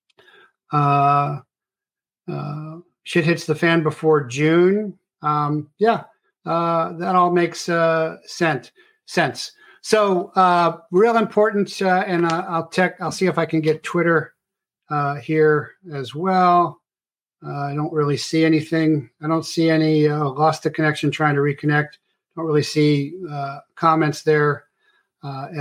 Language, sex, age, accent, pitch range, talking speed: English, male, 50-69, American, 150-175 Hz, 145 wpm